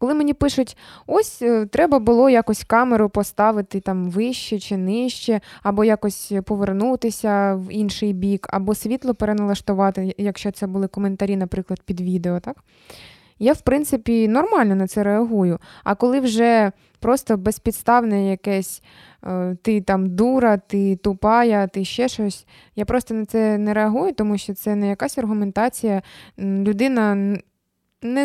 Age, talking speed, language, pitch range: 20-39, 140 wpm, Ukrainian, 195-230 Hz